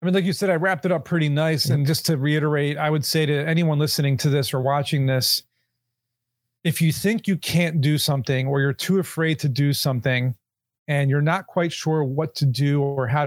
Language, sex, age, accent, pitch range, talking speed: English, male, 40-59, American, 135-185 Hz, 225 wpm